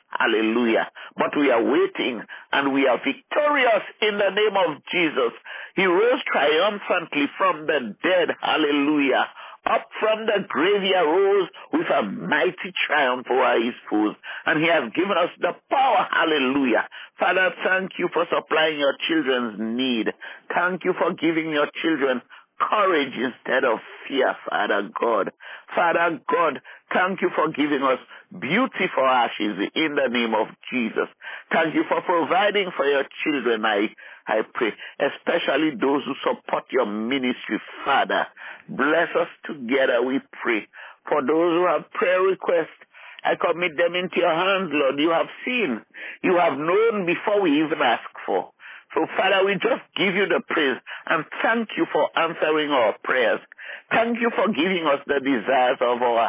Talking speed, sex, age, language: 155 wpm, male, 50-69, English